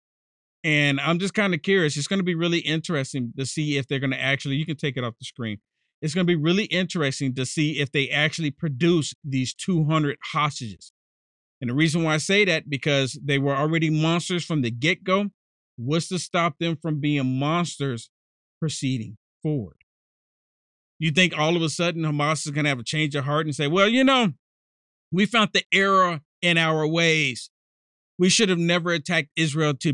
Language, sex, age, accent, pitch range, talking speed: English, male, 50-69, American, 145-175 Hz, 200 wpm